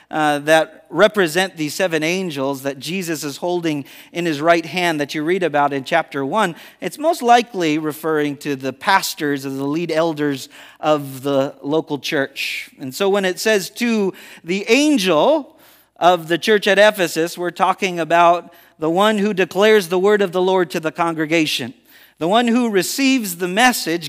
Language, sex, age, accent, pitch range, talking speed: English, male, 40-59, American, 155-205 Hz, 175 wpm